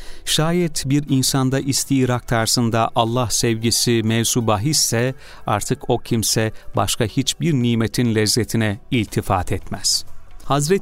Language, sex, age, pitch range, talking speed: Turkish, male, 40-59, 105-135 Hz, 100 wpm